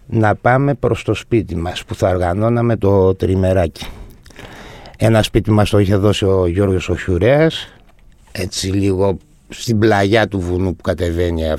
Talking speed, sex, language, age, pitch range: 150 wpm, male, Greek, 60-79, 90-120 Hz